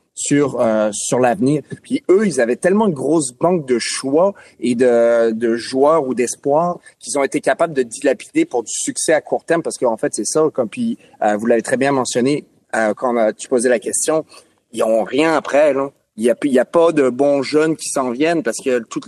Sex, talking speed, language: male, 225 wpm, French